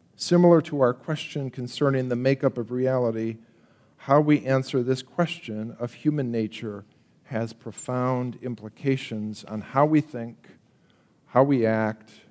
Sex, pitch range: male, 110-135 Hz